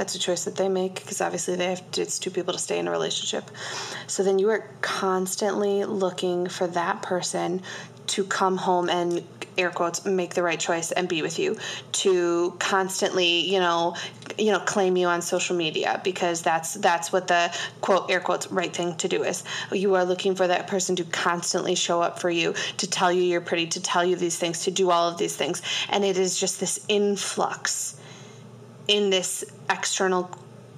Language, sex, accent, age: English, female, American, 20-39